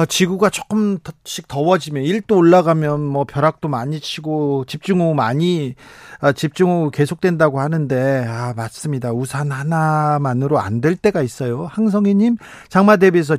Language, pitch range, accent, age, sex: Korean, 135-185 Hz, native, 40-59, male